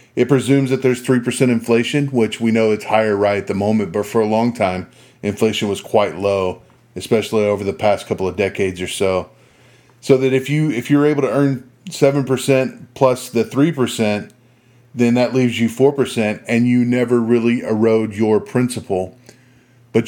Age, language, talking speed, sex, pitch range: 30-49, English, 180 wpm, male, 105-125 Hz